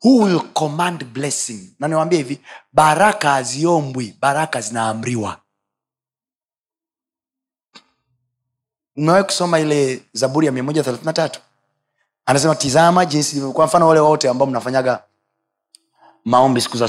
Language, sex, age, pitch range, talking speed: Swahili, male, 30-49, 105-155 Hz, 105 wpm